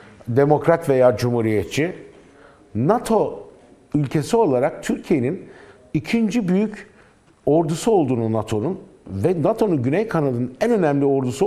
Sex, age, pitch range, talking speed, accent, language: male, 50-69, 130-180 Hz, 100 wpm, native, Turkish